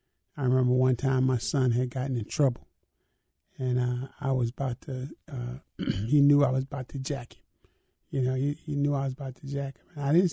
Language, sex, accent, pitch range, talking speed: English, male, American, 130-150 Hz, 225 wpm